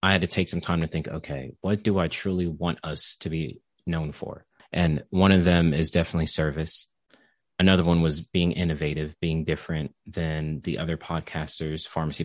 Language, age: English, 30-49